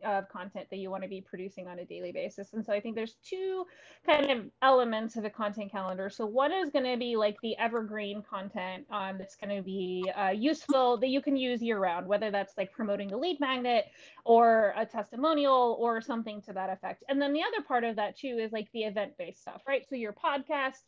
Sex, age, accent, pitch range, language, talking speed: female, 20-39, American, 200-260 Hz, English, 225 wpm